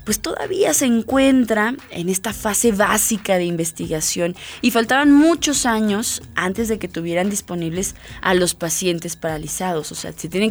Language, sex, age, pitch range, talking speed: Spanish, female, 20-39, 180-235 Hz, 155 wpm